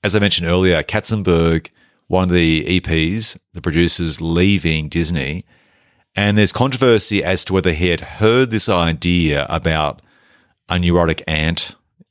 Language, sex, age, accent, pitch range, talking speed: English, male, 40-59, Australian, 80-100 Hz, 140 wpm